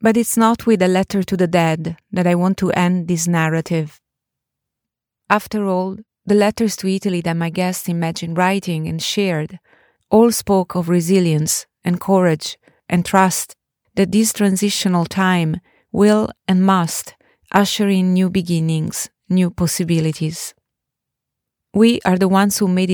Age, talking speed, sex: 30-49, 145 wpm, female